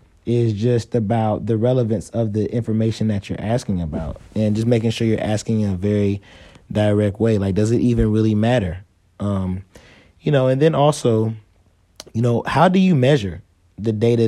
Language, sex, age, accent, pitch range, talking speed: English, male, 20-39, American, 100-115 Hz, 180 wpm